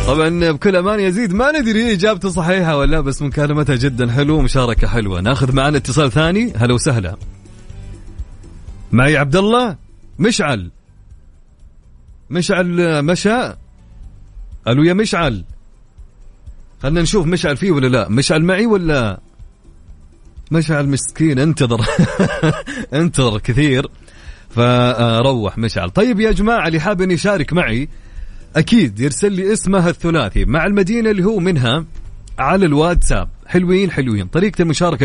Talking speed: 125 wpm